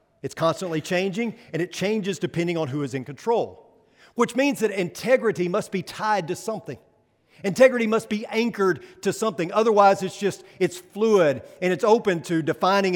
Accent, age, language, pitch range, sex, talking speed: American, 50-69, English, 160-215 Hz, male, 170 wpm